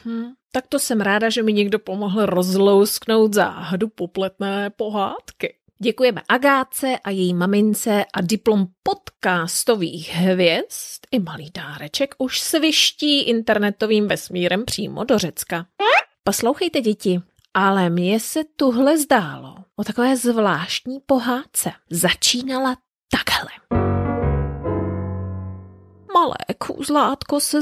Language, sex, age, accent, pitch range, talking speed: Czech, female, 30-49, native, 195-270 Hz, 105 wpm